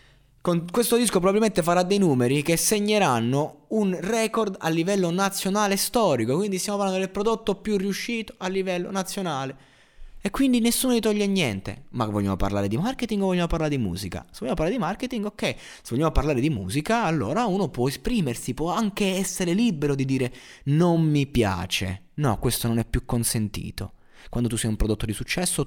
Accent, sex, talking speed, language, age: native, male, 180 wpm, Italian, 20-39